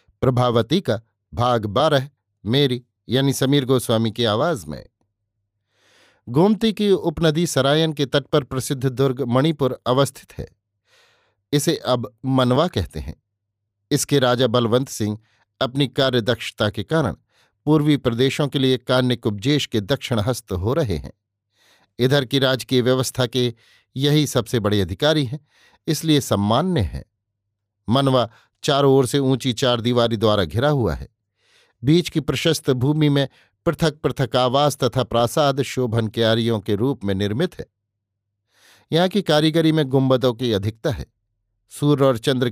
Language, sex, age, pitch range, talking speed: Hindi, male, 50-69, 115-145 Hz, 140 wpm